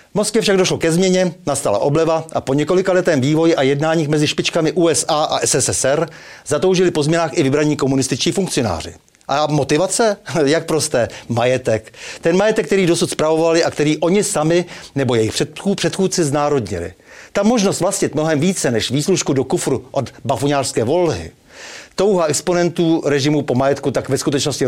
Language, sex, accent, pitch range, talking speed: Czech, male, native, 135-170 Hz, 160 wpm